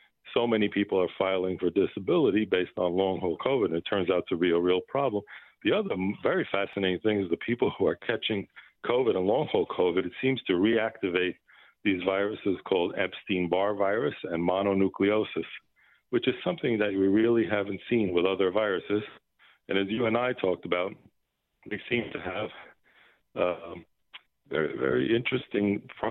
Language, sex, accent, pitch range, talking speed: English, male, American, 90-105 Hz, 165 wpm